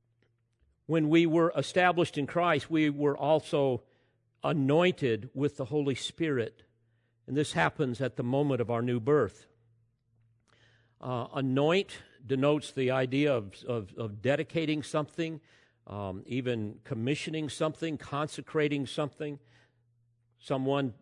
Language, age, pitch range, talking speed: English, 50-69, 120-150 Hz, 115 wpm